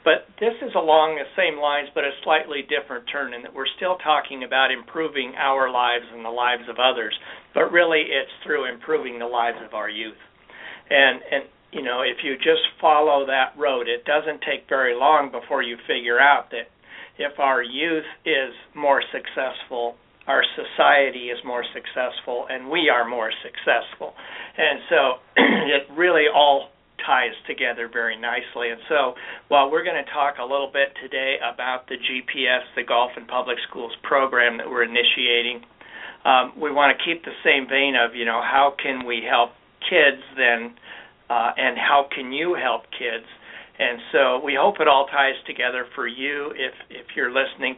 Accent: American